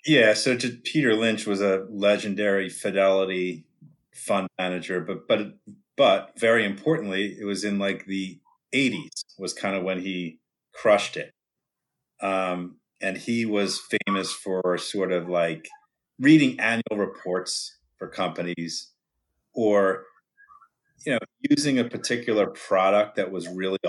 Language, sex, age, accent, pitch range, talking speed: English, male, 30-49, American, 90-110 Hz, 135 wpm